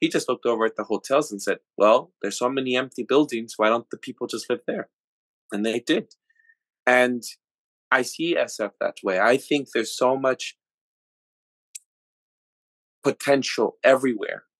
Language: English